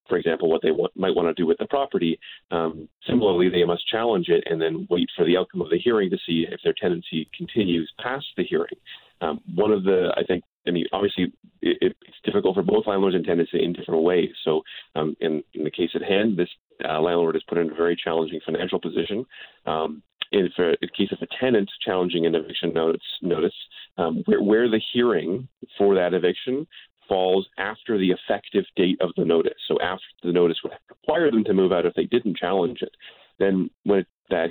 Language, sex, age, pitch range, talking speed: English, male, 30-49, 85-105 Hz, 210 wpm